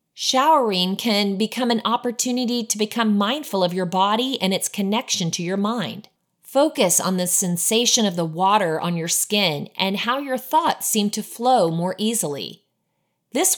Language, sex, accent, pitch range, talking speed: English, female, American, 170-235 Hz, 165 wpm